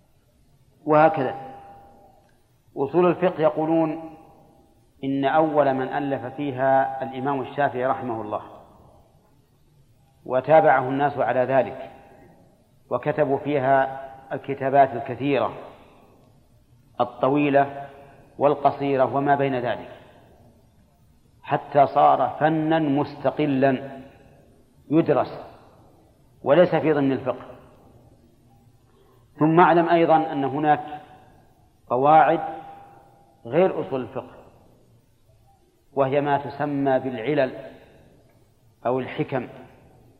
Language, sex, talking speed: Arabic, male, 75 wpm